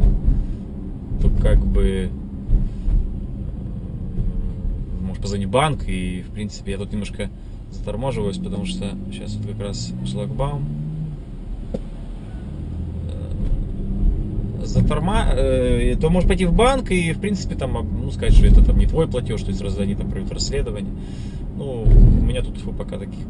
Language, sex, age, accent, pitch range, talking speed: Russian, male, 20-39, native, 95-105 Hz, 135 wpm